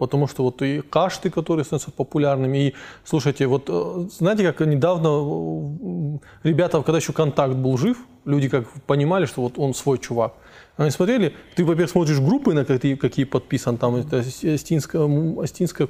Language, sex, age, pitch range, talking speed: Russian, male, 20-39, 130-170 Hz, 160 wpm